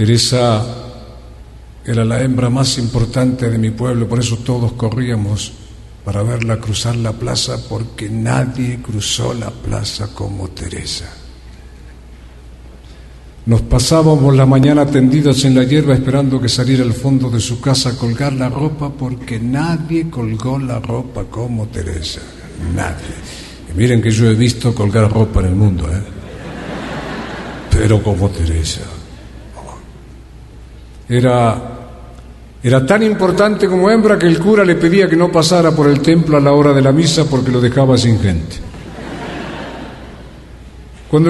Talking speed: 140 wpm